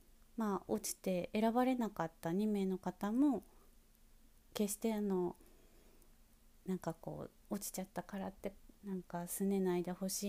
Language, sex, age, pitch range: Japanese, female, 30-49, 175-220 Hz